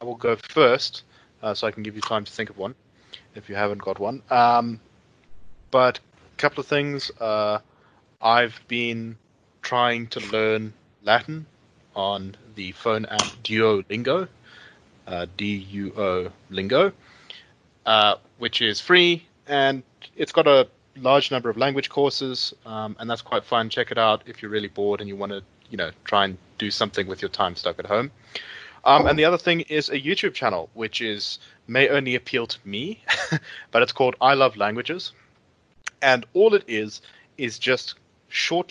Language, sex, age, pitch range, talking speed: English, male, 20-39, 105-125 Hz, 170 wpm